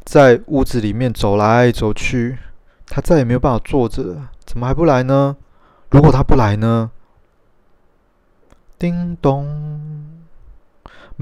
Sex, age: male, 20-39